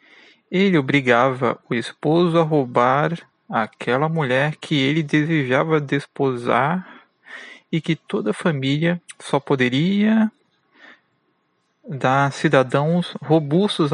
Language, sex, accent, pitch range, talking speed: Portuguese, male, Brazilian, 135-180 Hz, 95 wpm